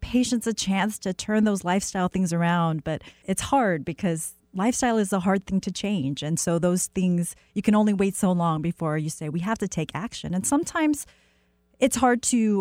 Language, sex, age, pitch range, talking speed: English, female, 30-49, 165-205 Hz, 205 wpm